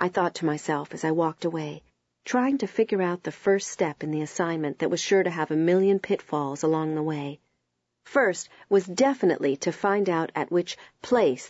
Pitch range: 150-190 Hz